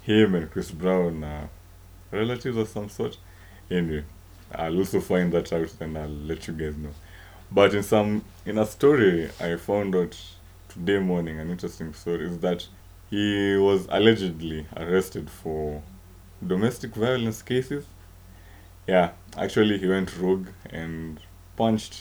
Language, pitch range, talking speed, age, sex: English, 85-95 Hz, 140 wpm, 20-39, male